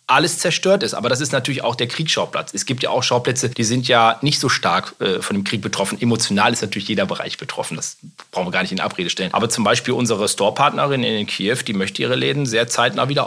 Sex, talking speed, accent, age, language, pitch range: male, 245 wpm, German, 30-49, German, 120-150 Hz